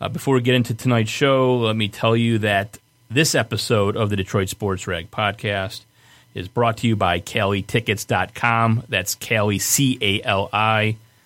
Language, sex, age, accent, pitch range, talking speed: English, male, 30-49, American, 105-125 Hz, 155 wpm